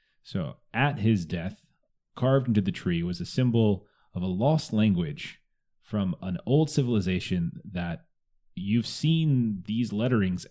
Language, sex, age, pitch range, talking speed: English, male, 30-49, 95-120 Hz, 135 wpm